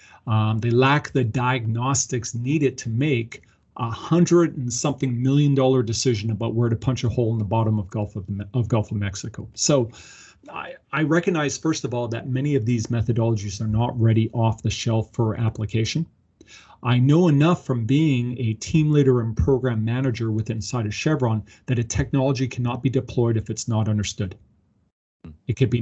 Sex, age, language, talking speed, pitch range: male, 40-59, English, 185 wpm, 110-135 Hz